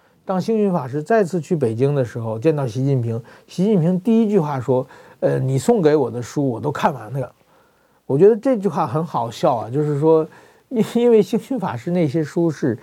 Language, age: Chinese, 50-69